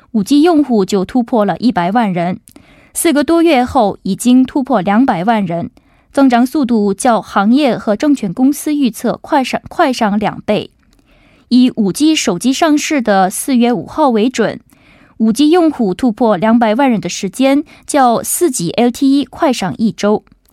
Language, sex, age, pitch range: Korean, female, 20-39, 210-275 Hz